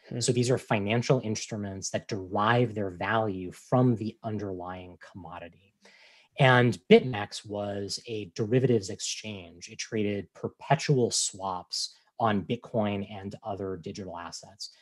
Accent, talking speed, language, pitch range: American, 115 wpm, English, 100-130 Hz